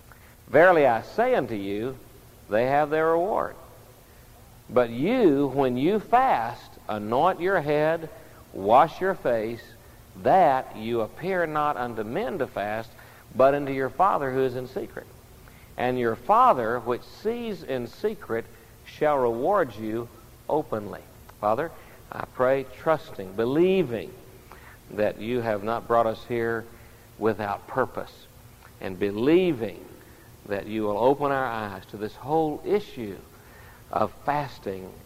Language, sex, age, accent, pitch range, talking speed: English, male, 60-79, American, 110-140 Hz, 130 wpm